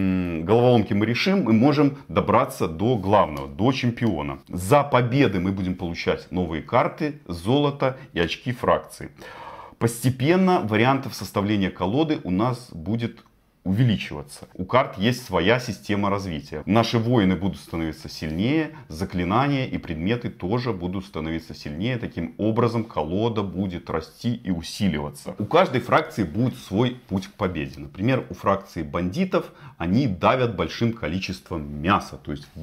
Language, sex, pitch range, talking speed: Russian, male, 95-130 Hz, 135 wpm